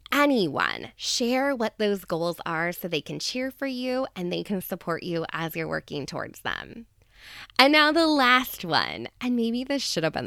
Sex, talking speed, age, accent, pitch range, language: female, 195 wpm, 20-39, American, 185-265 Hz, English